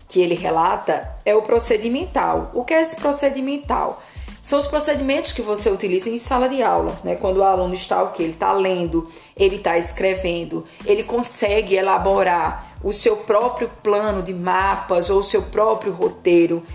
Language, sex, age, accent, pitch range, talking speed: Portuguese, female, 20-39, Brazilian, 185-255 Hz, 170 wpm